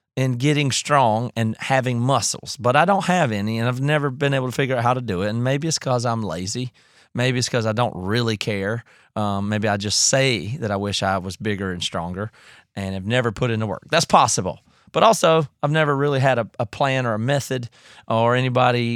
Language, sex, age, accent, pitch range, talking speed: English, male, 30-49, American, 105-130 Hz, 225 wpm